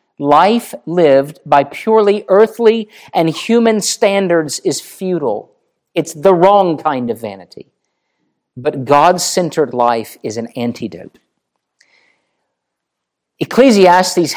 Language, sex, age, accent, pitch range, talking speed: English, male, 50-69, American, 135-185 Hz, 95 wpm